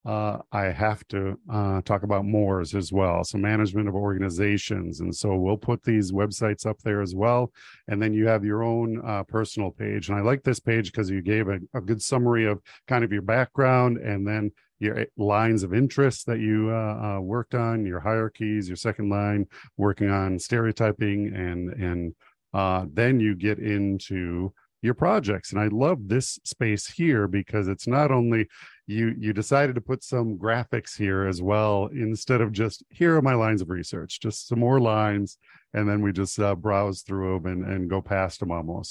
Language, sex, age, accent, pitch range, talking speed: English, male, 50-69, American, 95-115 Hz, 195 wpm